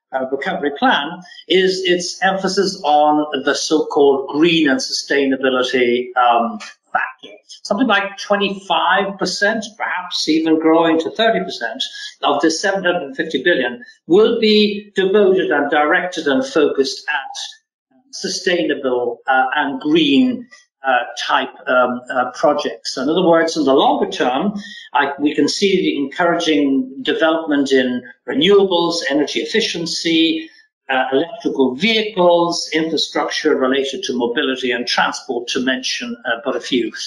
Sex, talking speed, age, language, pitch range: male, 120 wpm, 50-69, English, 145-210 Hz